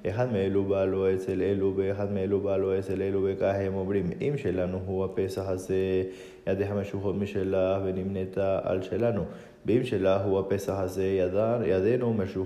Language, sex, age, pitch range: Spanish, male, 20-39, 95-115 Hz